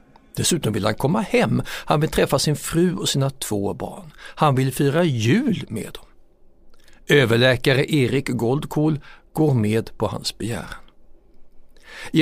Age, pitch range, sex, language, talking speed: 60-79, 115-175 Hz, male, Swedish, 140 wpm